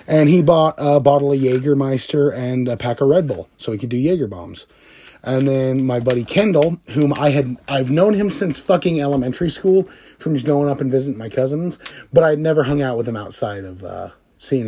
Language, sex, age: English, male, 30-49